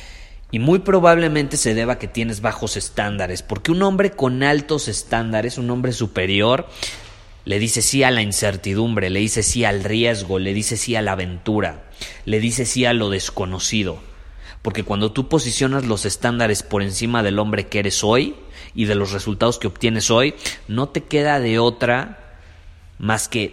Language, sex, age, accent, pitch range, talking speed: Spanish, male, 30-49, Mexican, 100-125 Hz, 175 wpm